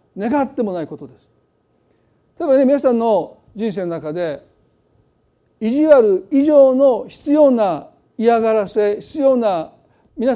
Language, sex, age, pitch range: Japanese, male, 40-59, 190-265 Hz